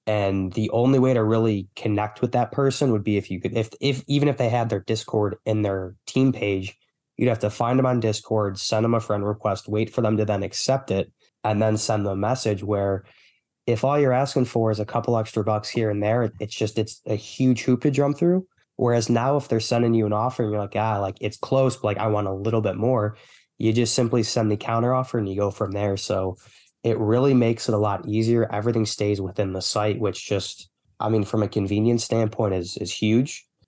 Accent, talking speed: American, 240 wpm